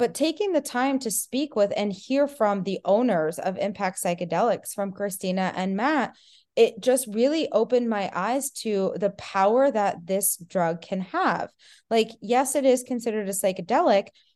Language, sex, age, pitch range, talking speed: English, female, 20-39, 195-250 Hz, 165 wpm